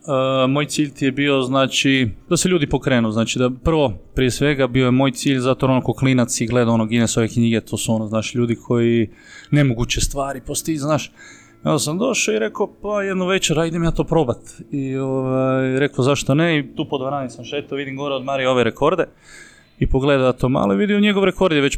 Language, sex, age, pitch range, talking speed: Croatian, male, 20-39, 125-145 Hz, 215 wpm